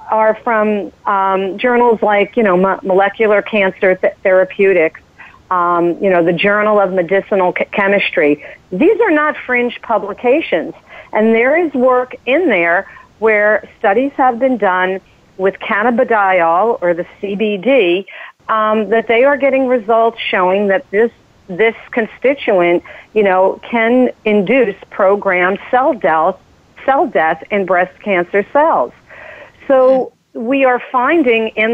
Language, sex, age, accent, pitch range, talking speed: English, female, 50-69, American, 185-240 Hz, 135 wpm